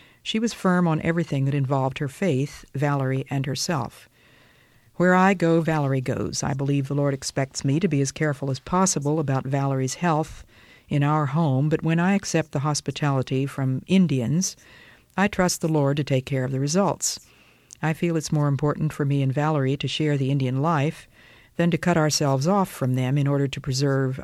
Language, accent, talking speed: English, American, 195 wpm